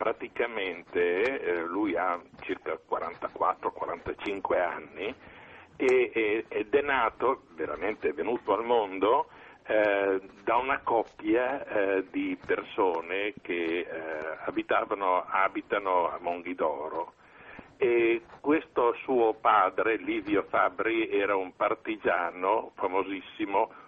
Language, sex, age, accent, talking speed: Italian, male, 50-69, native, 100 wpm